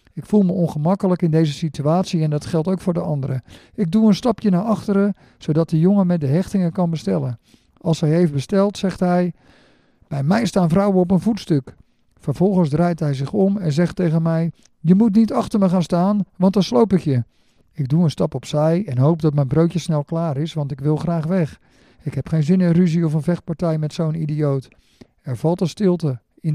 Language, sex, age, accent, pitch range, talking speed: Dutch, male, 50-69, Dutch, 145-185 Hz, 220 wpm